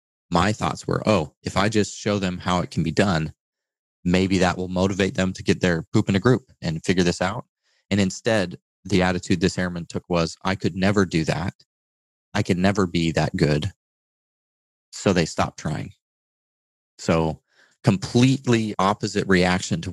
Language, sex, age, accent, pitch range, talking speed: English, male, 30-49, American, 85-100 Hz, 175 wpm